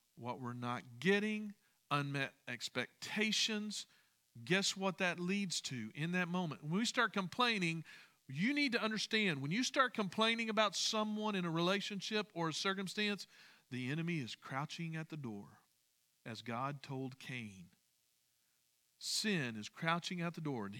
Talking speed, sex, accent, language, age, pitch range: 150 wpm, male, American, English, 50-69, 140-200 Hz